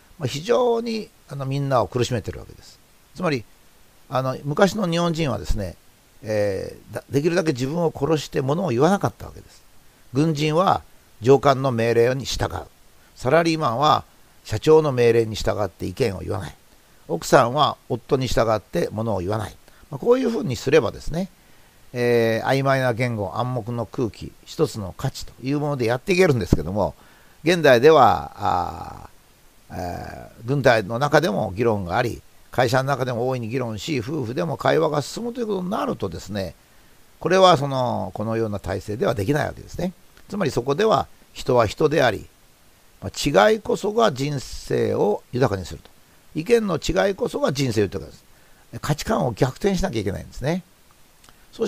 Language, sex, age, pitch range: Japanese, male, 50-69, 105-155 Hz